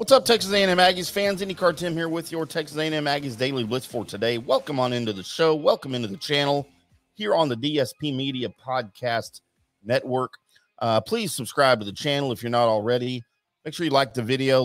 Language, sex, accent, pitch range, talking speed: English, male, American, 105-145 Hz, 210 wpm